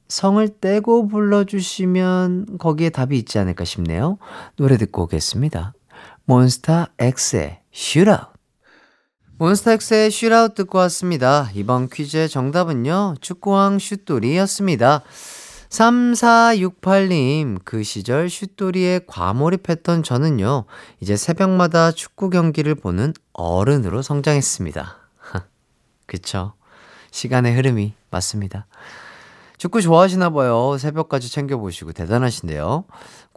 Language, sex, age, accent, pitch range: Korean, male, 40-59, native, 120-185 Hz